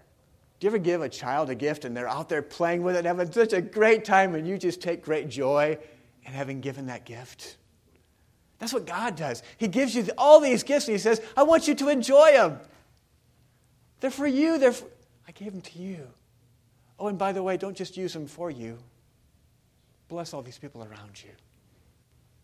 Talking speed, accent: 205 wpm, American